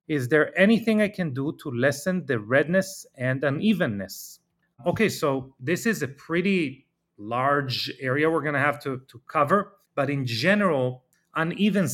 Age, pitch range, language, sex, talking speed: 30-49, 125-160 Hz, English, male, 150 wpm